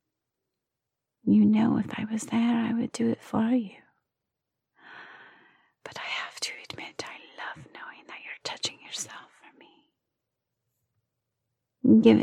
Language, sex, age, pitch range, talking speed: English, female, 30-49, 220-250 Hz, 130 wpm